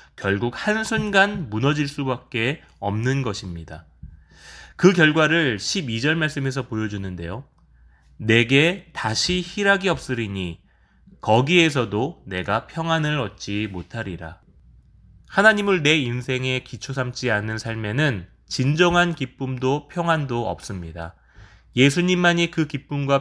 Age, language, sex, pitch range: 20-39, Korean, male, 95-150 Hz